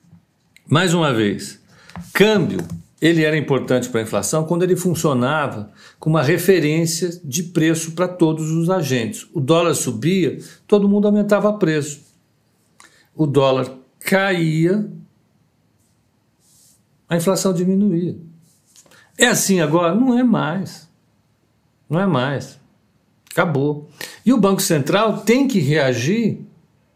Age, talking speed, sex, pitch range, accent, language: 60-79, 115 wpm, male, 130-190 Hz, Brazilian, Portuguese